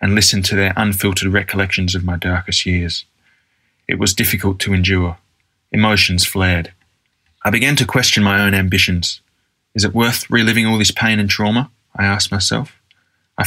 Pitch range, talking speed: 95-110 Hz, 165 wpm